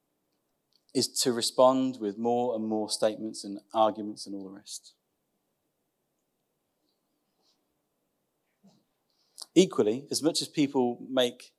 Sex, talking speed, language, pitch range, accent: male, 105 wpm, English, 115-160 Hz, British